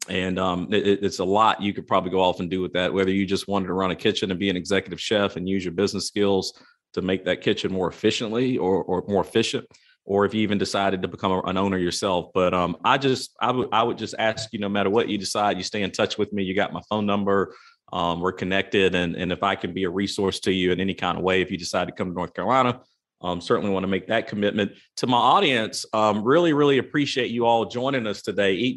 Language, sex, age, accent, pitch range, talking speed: English, male, 40-59, American, 95-110 Hz, 260 wpm